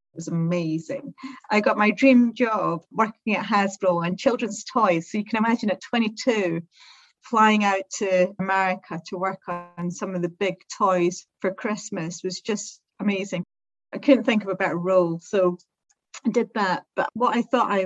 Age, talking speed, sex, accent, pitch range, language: 40-59, 175 wpm, female, British, 185-220 Hz, English